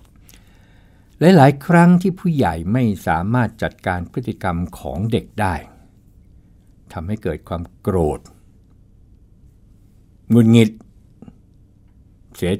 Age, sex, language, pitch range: 60-79, male, Thai, 95-115 Hz